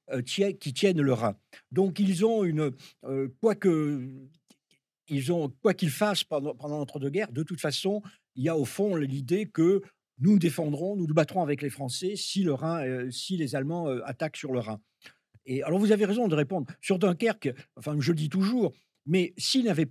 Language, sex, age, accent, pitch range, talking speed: French, male, 50-69, French, 135-190 Hz, 200 wpm